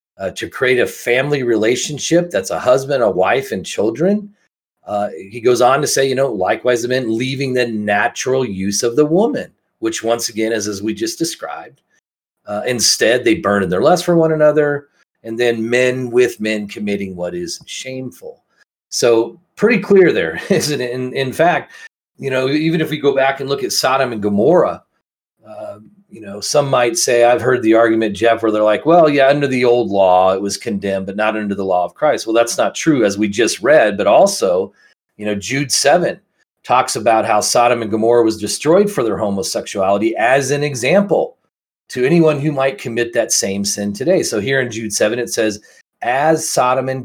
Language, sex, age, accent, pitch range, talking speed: English, male, 40-59, American, 110-145 Hz, 200 wpm